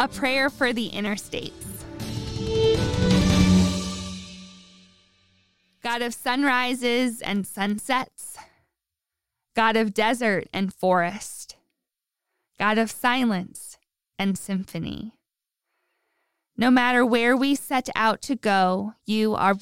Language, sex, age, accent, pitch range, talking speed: English, female, 20-39, American, 190-240 Hz, 90 wpm